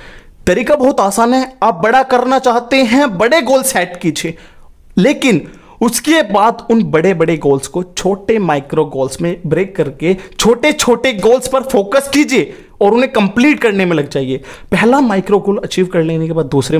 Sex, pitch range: male, 160-245 Hz